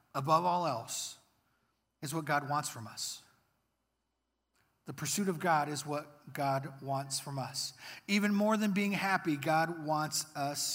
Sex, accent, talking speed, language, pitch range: male, American, 150 wpm, English, 155-195 Hz